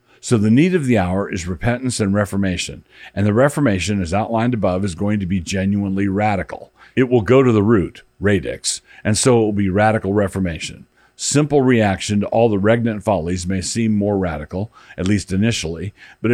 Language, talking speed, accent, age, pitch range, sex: English, 185 wpm, American, 50-69, 95-115 Hz, male